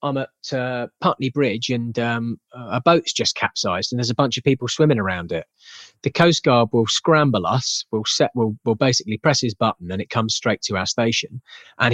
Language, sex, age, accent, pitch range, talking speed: English, male, 30-49, British, 105-135 Hz, 205 wpm